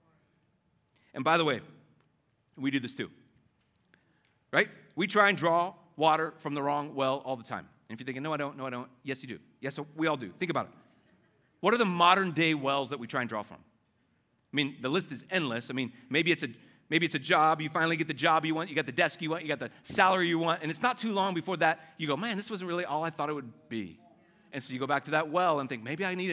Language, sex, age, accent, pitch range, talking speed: English, male, 40-59, American, 130-165 Hz, 265 wpm